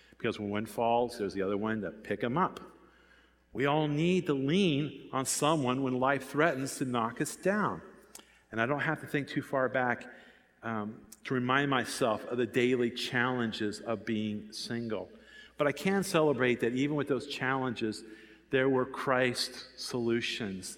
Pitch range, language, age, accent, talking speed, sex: 115-140 Hz, English, 50-69, American, 170 wpm, male